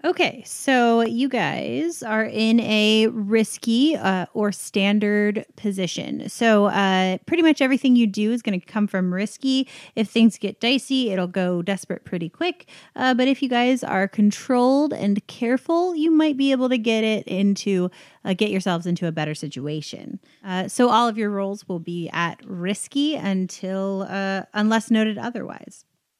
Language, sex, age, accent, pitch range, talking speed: English, female, 30-49, American, 185-245 Hz, 165 wpm